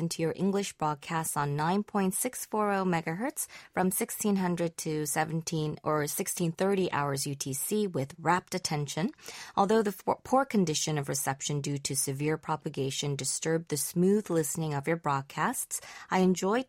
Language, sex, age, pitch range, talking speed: English, female, 20-39, 150-195 Hz, 155 wpm